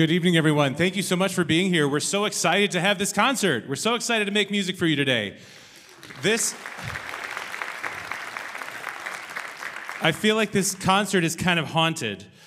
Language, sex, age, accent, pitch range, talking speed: English, male, 30-49, American, 115-165 Hz, 175 wpm